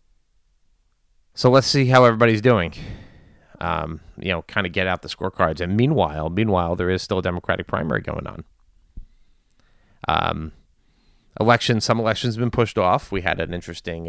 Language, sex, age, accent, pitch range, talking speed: English, male, 30-49, American, 85-110 Hz, 160 wpm